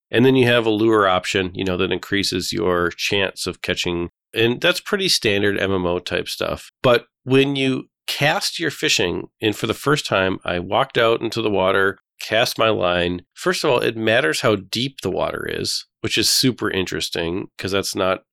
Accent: American